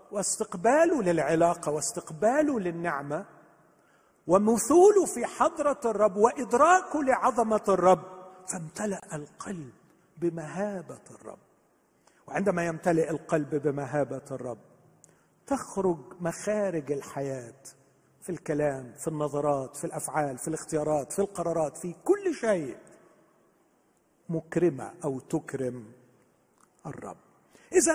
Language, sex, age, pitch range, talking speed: Arabic, male, 50-69, 150-225 Hz, 90 wpm